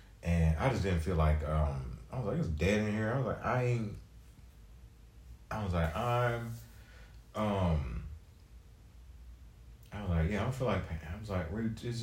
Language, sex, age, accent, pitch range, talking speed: English, male, 30-49, American, 80-110 Hz, 190 wpm